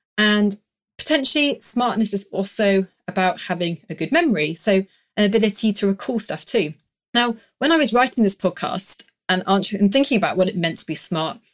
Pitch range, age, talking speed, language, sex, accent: 185-230 Hz, 30-49, 180 wpm, English, female, British